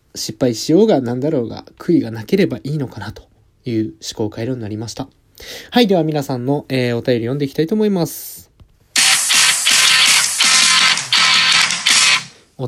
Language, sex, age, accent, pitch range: Japanese, male, 20-39, native, 110-150 Hz